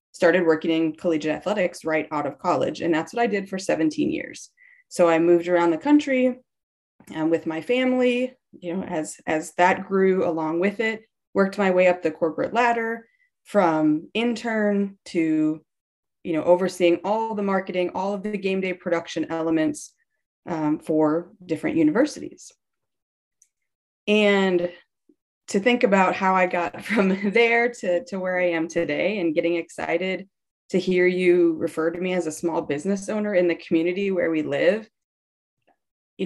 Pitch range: 165-225 Hz